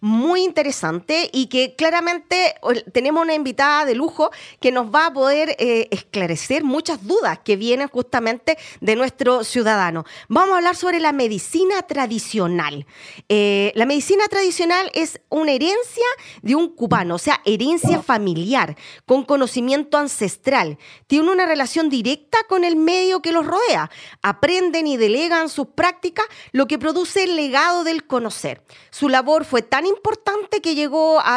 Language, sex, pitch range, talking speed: Spanish, female, 235-335 Hz, 150 wpm